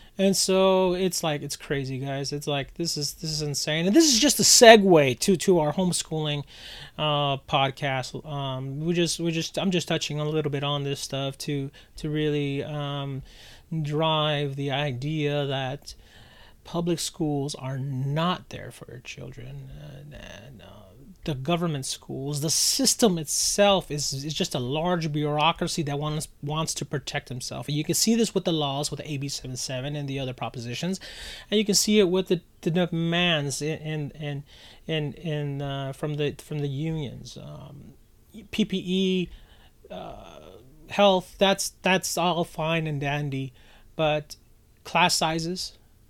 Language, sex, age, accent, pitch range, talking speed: English, male, 30-49, American, 140-170 Hz, 155 wpm